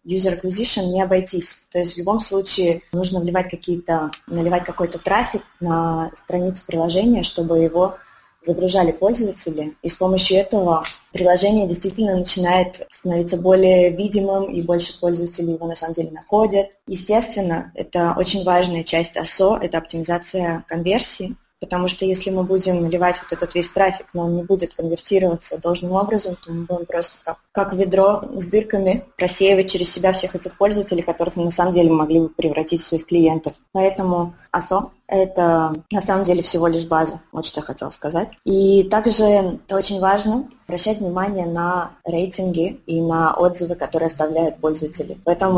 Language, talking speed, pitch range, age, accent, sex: Russian, 155 wpm, 170-195 Hz, 20-39, native, female